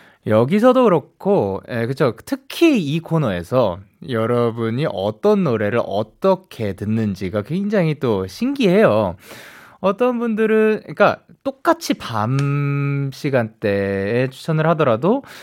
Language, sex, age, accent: Korean, male, 20-39, native